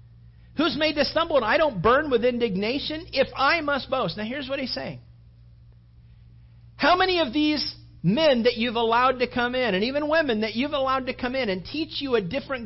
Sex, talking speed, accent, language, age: male, 210 wpm, American, English, 40-59